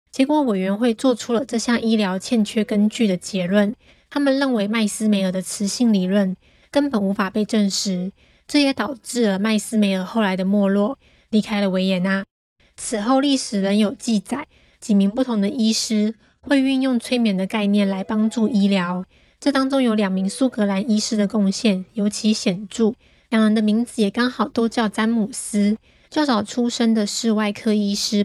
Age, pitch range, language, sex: 20-39, 200-235 Hz, Chinese, female